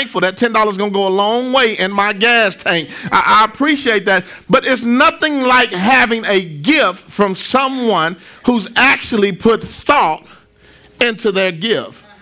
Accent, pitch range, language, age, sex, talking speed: American, 185-250 Hz, English, 40-59, male, 160 wpm